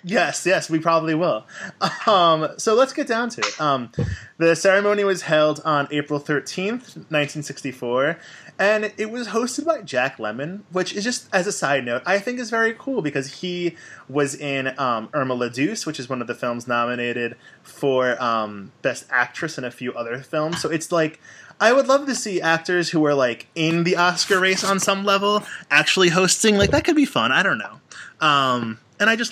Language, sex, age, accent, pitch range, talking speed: English, male, 20-39, American, 130-180 Hz, 195 wpm